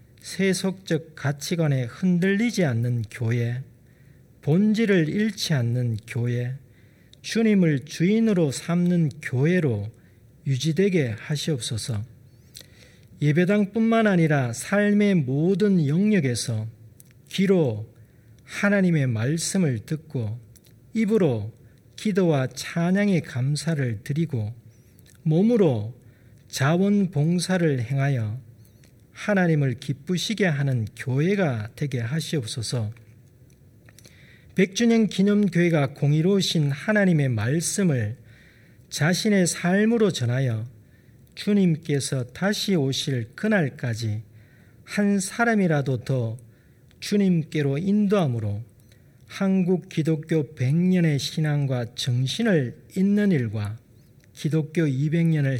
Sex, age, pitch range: male, 40-59, 120-175 Hz